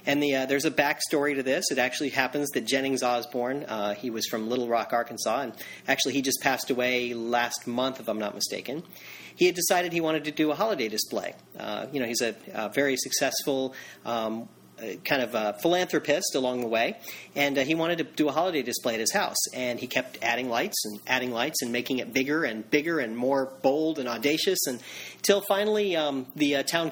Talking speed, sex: 220 wpm, male